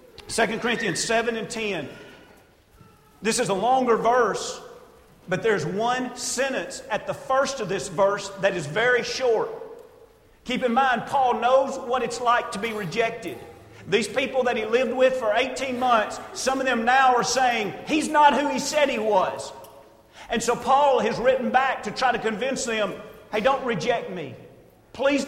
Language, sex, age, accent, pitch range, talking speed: English, male, 40-59, American, 195-260 Hz, 175 wpm